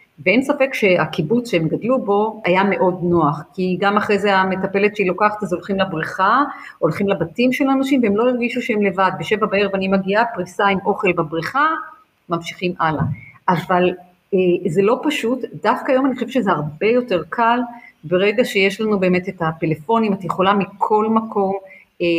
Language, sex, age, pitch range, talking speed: Hebrew, female, 40-59, 170-230 Hz, 170 wpm